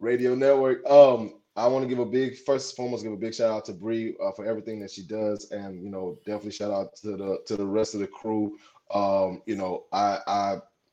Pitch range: 100-125 Hz